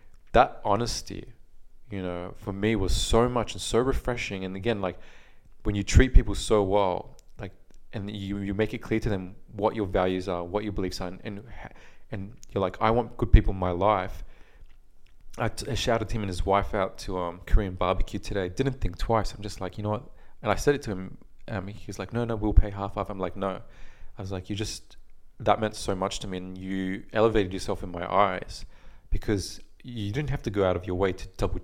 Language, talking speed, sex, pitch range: English, 230 wpm, male, 95-110 Hz